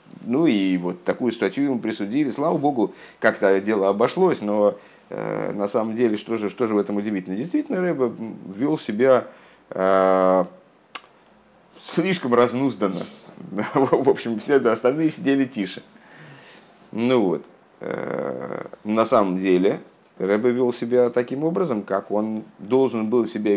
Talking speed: 140 wpm